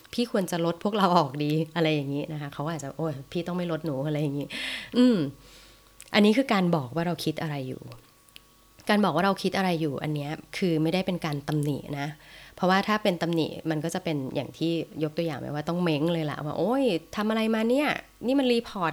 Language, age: Thai, 20-39